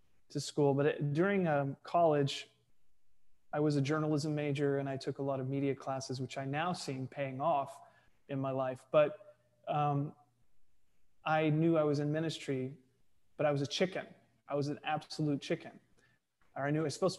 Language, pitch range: English, 135-160 Hz